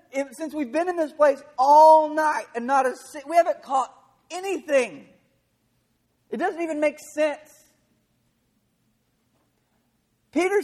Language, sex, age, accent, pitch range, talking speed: English, male, 40-59, American, 225-310 Hz, 120 wpm